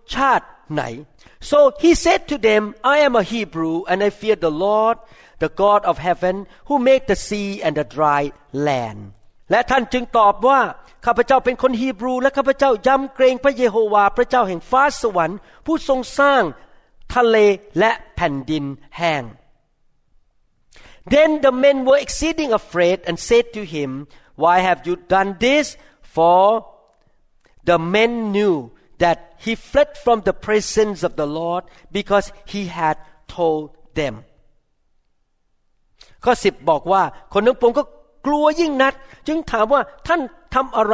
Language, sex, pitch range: Thai, male, 170-250 Hz